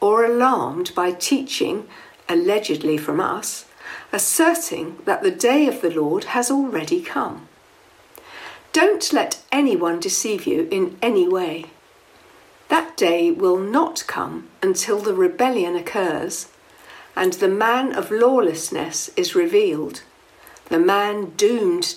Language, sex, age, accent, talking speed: English, female, 60-79, British, 120 wpm